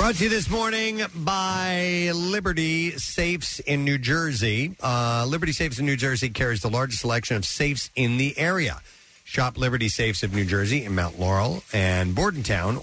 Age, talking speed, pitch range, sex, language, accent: 50-69, 175 wpm, 105-155 Hz, male, English, American